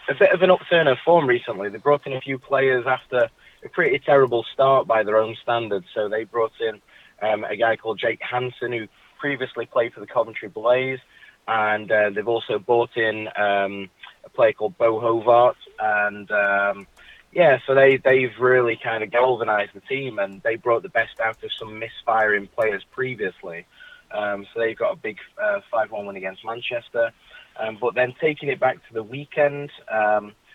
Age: 20-39